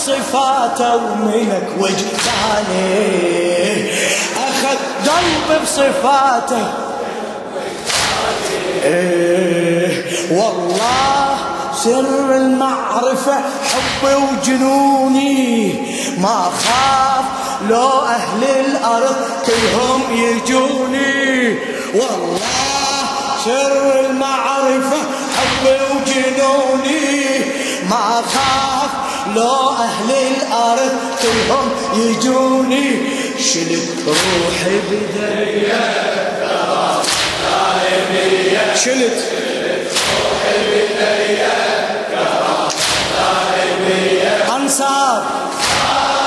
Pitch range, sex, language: 225-270 Hz, male, Arabic